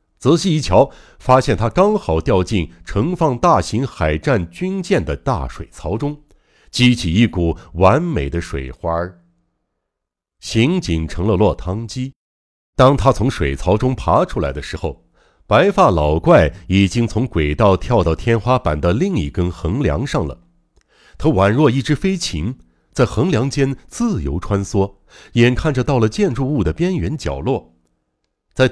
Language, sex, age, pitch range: Chinese, male, 60-79, 85-130 Hz